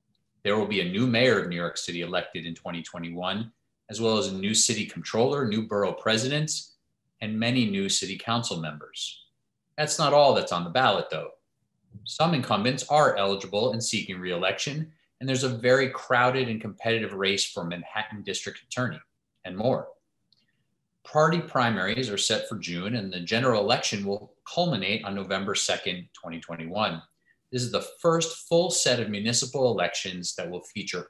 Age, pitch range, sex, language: 30-49, 100-130 Hz, male, English